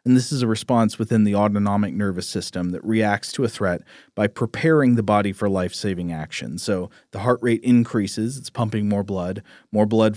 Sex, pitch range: male, 100-120 Hz